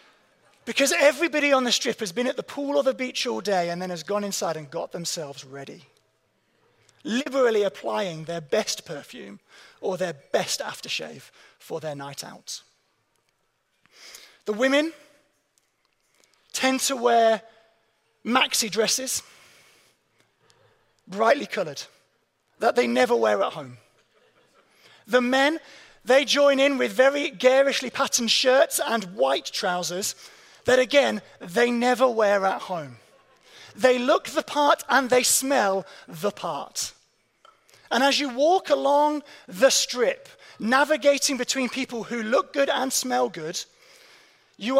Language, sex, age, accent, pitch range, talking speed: English, male, 30-49, British, 210-280 Hz, 130 wpm